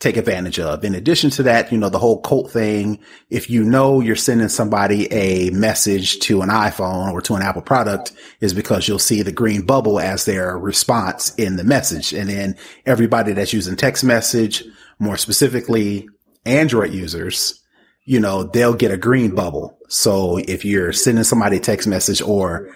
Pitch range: 95-115 Hz